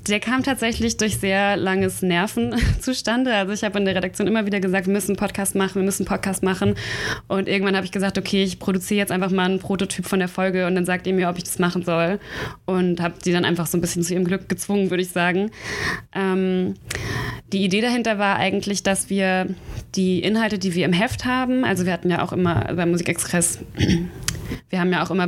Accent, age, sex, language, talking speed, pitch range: German, 20-39, female, German, 230 wpm, 175-195 Hz